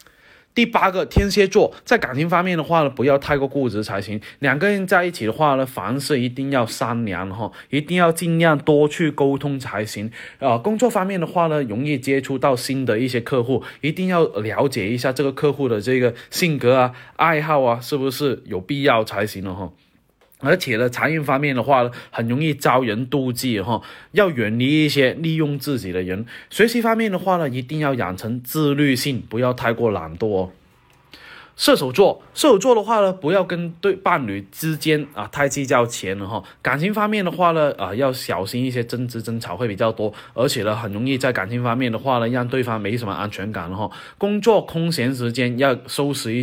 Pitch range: 115-155 Hz